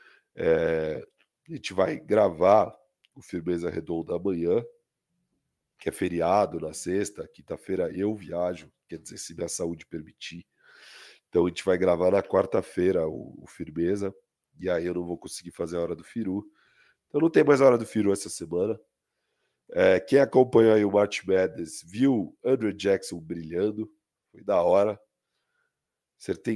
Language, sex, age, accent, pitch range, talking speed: Portuguese, male, 40-59, Brazilian, 90-130 Hz, 155 wpm